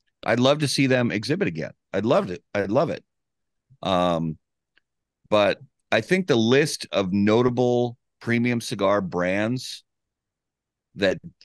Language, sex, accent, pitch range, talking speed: English, male, American, 85-110 Hz, 130 wpm